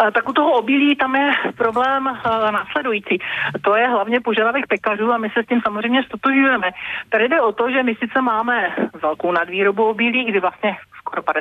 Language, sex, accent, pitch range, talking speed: Czech, male, native, 195-230 Hz, 180 wpm